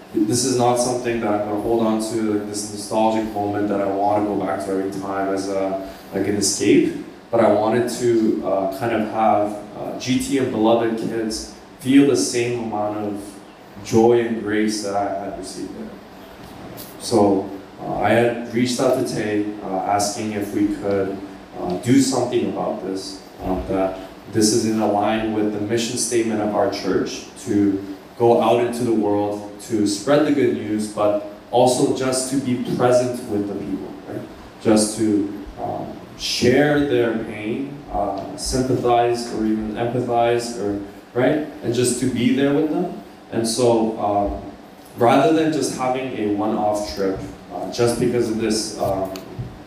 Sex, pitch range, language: male, 100-120 Hz, Korean